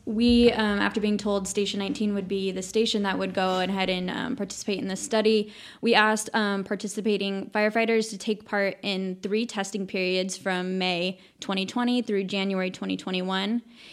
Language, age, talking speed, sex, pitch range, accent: English, 10-29, 170 wpm, female, 190-225 Hz, American